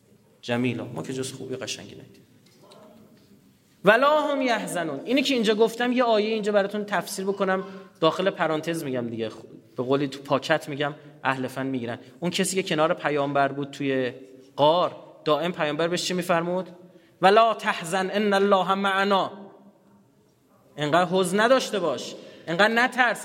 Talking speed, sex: 145 wpm, male